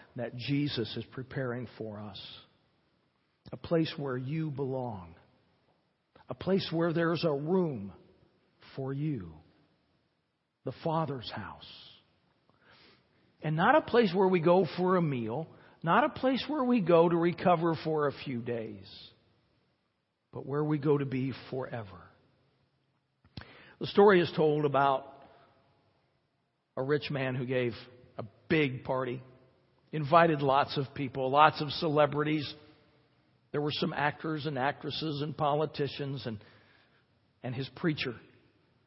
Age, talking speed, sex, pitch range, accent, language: 60-79, 130 wpm, male, 120-155 Hz, American, English